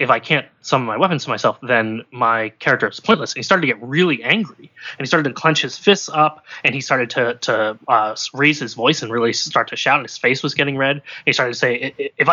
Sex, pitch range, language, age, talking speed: male, 120-150 Hz, English, 20-39, 265 wpm